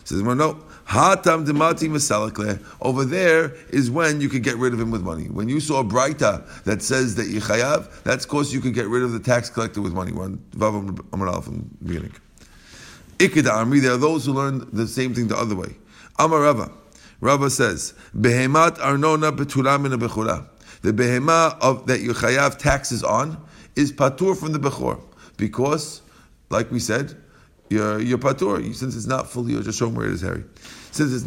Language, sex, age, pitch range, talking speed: English, male, 50-69, 120-155 Hz, 175 wpm